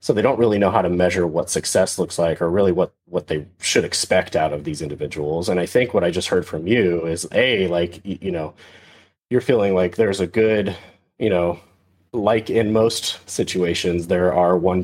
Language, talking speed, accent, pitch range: English, 210 wpm, American, 85-100 Hz